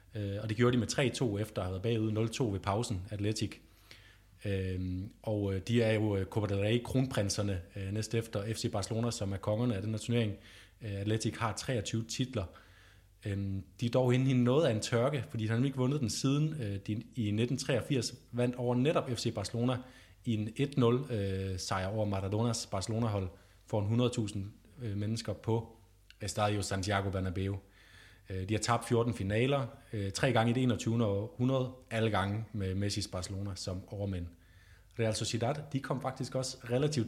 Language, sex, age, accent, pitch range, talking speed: Danish, male, 30-49, native, 100-120 Hz, 165 wpm